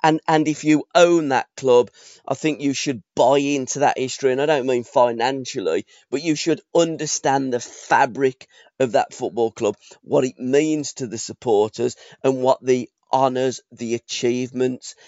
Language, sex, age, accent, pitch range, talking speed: English, male, 40-59, British, 125-155 Hz, 165 wpm